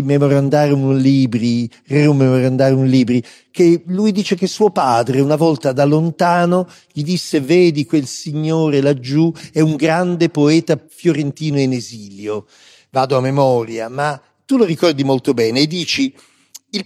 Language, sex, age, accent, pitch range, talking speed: Italian, male, 50-69, native, 130-170 Hz, 140 wpm